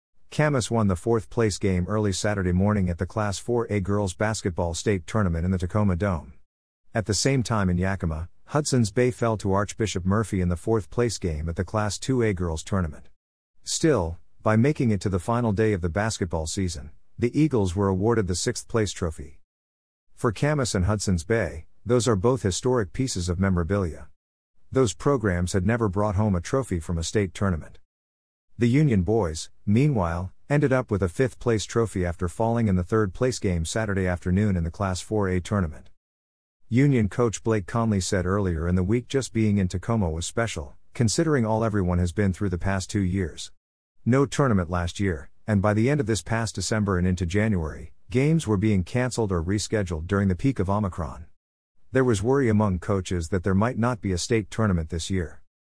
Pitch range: 90-115 Hz